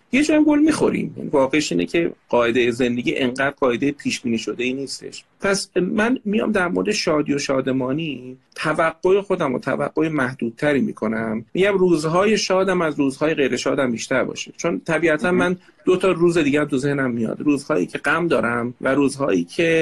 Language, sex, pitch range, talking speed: Persian, male, 135-195 Hz, 165 wpm